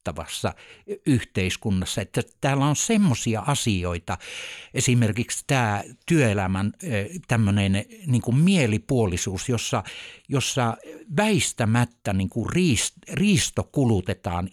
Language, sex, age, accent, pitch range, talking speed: Finnish, male, 60-79, native, 95-130 Hz, 80 wpm